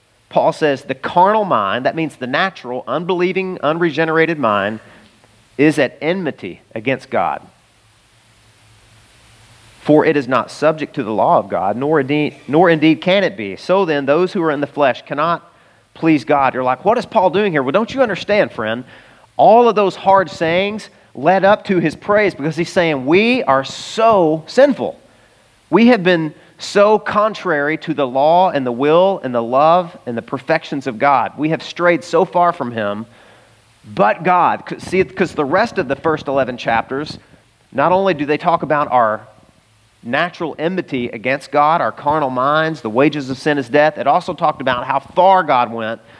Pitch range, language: 130-180 Hz, English